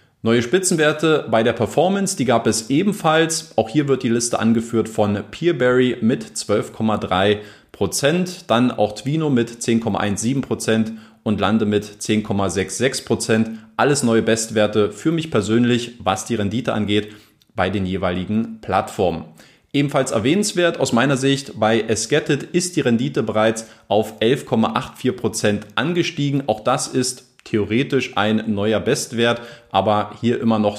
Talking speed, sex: 135 wpm, male